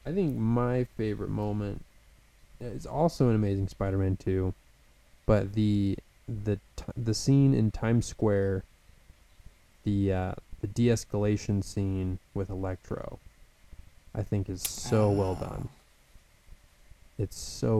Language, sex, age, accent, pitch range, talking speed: English, male, 20-39, American, 95-110 Hz, 120 wpm